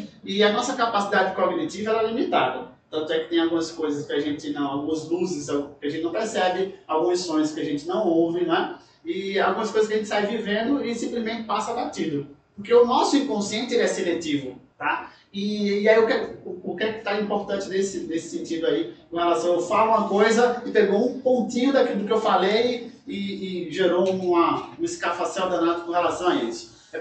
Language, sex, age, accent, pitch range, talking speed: Portuguese, male, 20-39, Brazilian, 170-240 Hz, 215 wpm